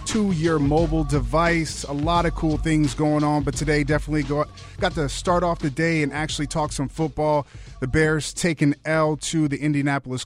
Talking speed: 185 wpm